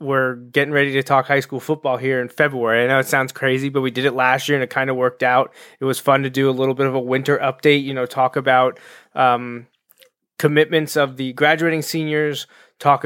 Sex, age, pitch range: male, 20-39, 130-155 Hz